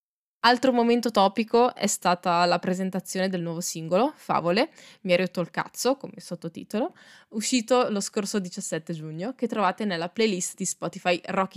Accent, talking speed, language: native, 155 wpm, Italian